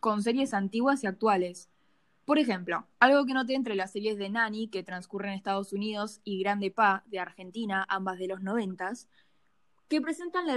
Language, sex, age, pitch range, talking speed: Spanish, female, 10-29, 195-240 Hz, 180 wpm